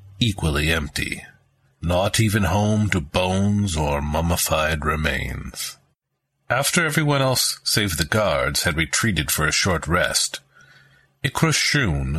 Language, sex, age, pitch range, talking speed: English, male, 50-69, 80-110 Hz, 110 wpm